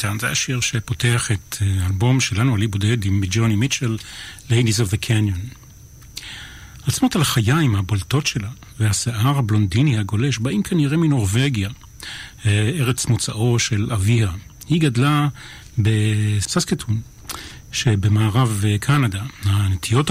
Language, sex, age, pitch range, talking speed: Hebrew, male, 40-59, 110-140 Hz, 110 wpm